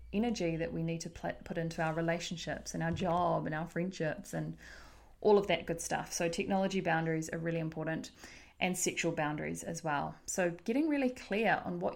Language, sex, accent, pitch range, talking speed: English, female, Australian, 165-200 Hz, 190 wpm